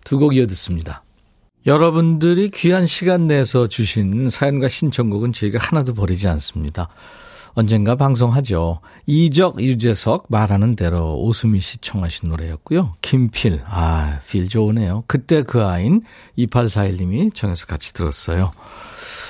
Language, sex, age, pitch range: Korean, male, 50-69, 100-155 Hz